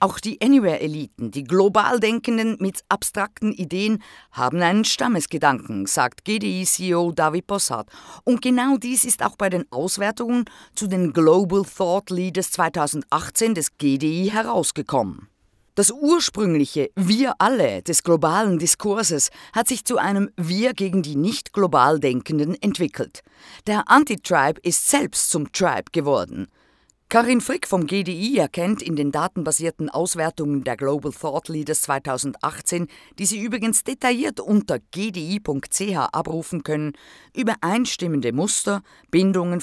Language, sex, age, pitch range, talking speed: German, female, 50-69, 150-215 Hz, 125 wpm